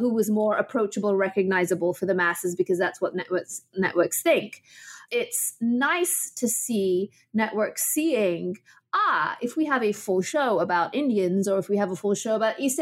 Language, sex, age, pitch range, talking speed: English, female, 30-49, 195-245 Hz, 180 wpm